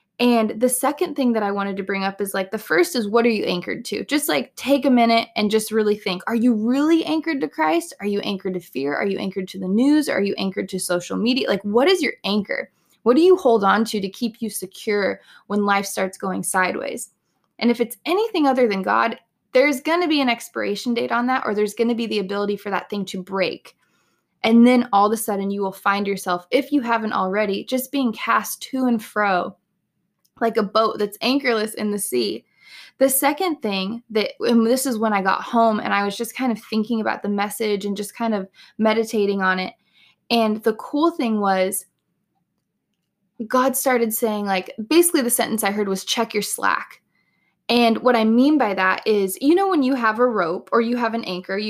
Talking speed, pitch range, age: 220 wpm, 195-240 Hz, 20-39